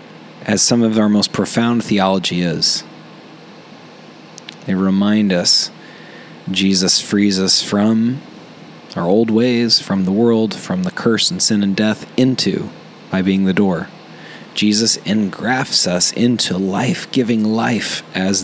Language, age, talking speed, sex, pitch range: English, 30-49, 130 wpm, male, 95-110 Hz